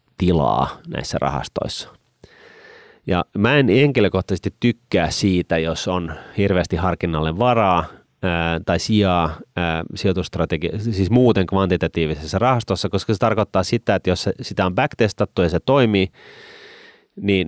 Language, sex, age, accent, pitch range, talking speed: Finnish, male, 30-49, native, 85-105 Hz, 105 wpm